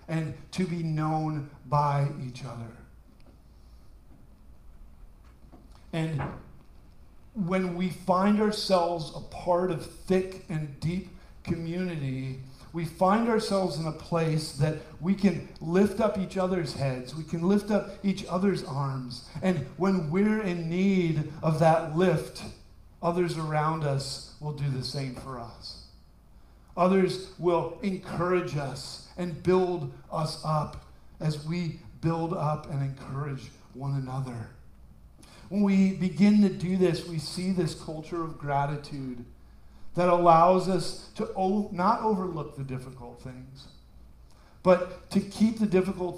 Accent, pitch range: American, 135-180 Hz